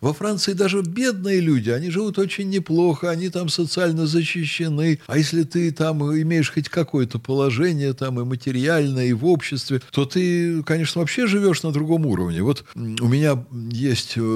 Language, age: Russian, 60-79